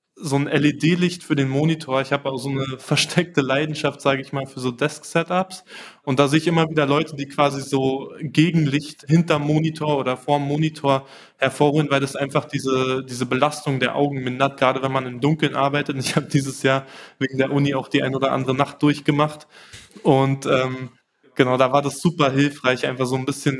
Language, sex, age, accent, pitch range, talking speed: German, male, 20-39, German, 135-150 Hz, 195 wpm